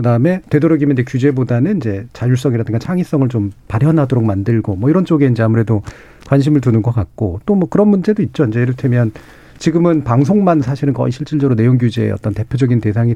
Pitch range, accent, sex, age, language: 115-155 Hz, native, male, 40-59, Korean